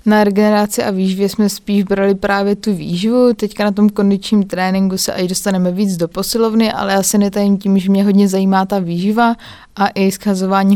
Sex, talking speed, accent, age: female, 190 wpm, native, 20-39